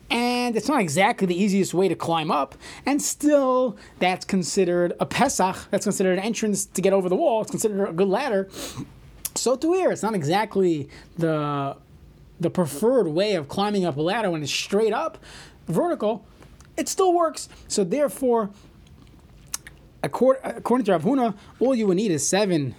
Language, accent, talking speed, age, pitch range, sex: English, American, 170 wpm, 30-49, 175-225 Hz, male